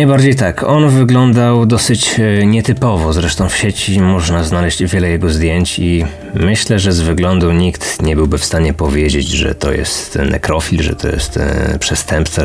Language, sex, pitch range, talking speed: Polish, male, 80-100 Hz, 165 wpm